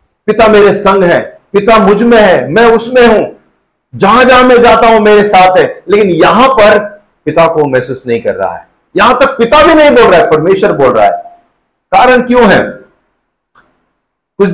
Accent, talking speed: native, 185 wpm